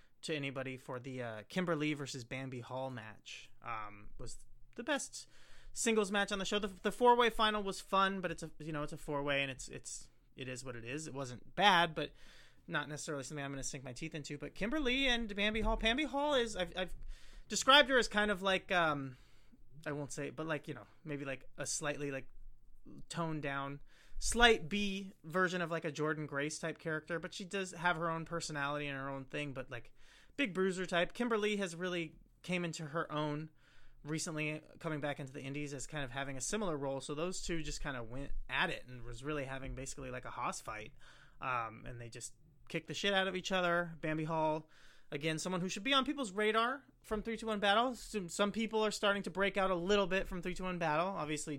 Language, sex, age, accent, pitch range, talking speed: English, male, 30-49, American, 140-190 Hz, 225 wpm